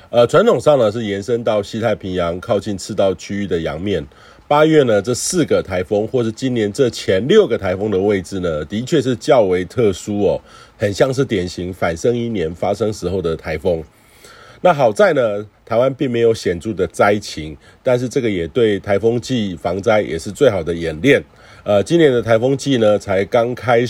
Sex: male